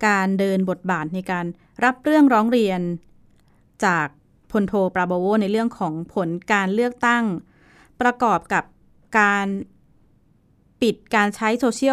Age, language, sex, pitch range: 20-39, Thai, female, 180-220 Hz